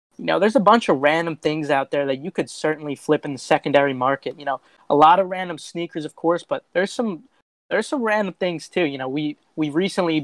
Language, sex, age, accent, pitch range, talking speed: English, male, 20-39, American, 135-160 Hz, 240 wpm